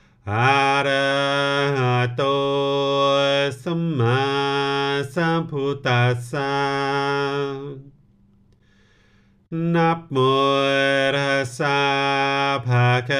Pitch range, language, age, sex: 135-140 Hz, English, 40-59, male